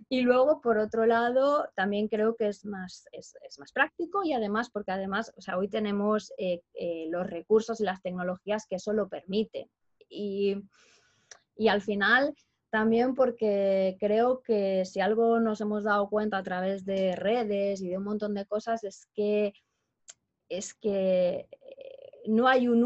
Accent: Spanish